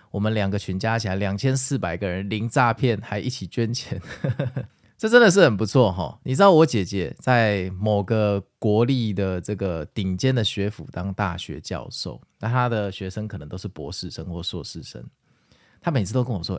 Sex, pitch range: male, 95-135 Hz